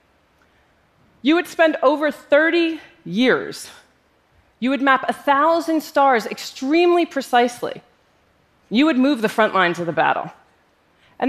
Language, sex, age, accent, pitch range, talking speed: Russian, female, 30-49, American, 180-280 Hz, 130 wpm